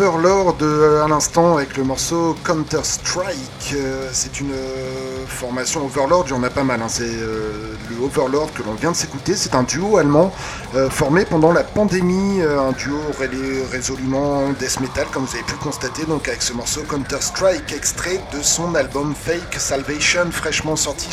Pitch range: 130-165 Hz